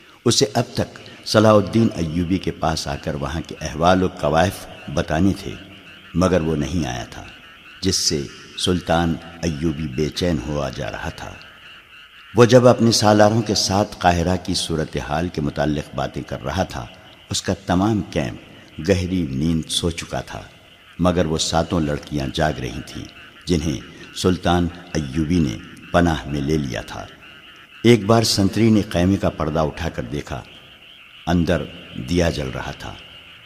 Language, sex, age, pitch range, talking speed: Urdu, male, 60-79, 80-95 Hz, 160 wpm